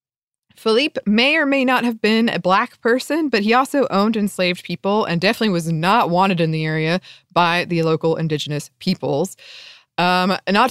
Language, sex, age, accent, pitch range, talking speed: English, female, 20-39, American, 170-230 Hz, 175 wpm